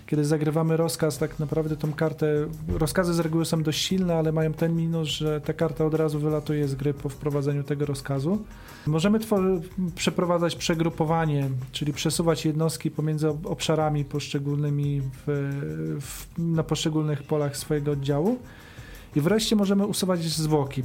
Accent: native